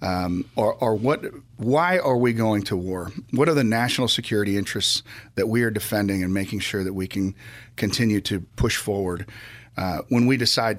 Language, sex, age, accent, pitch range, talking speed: English, male, 40-59, American, 100-120 Hz, 185 wpm